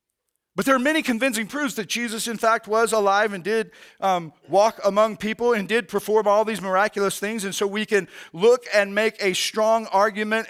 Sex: male